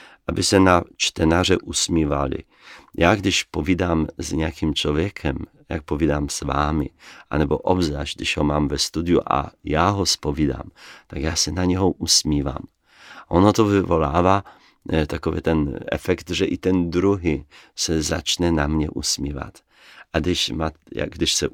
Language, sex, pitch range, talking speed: Czech, male, 75-90 Hz, 140 wpm